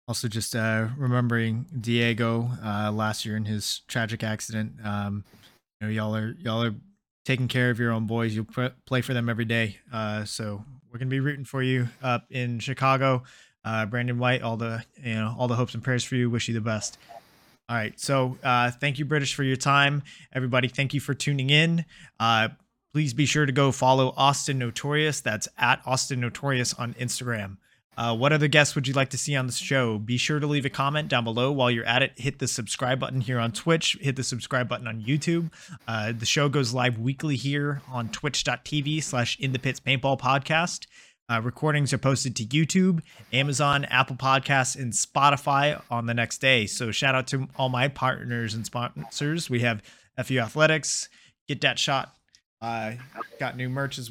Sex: male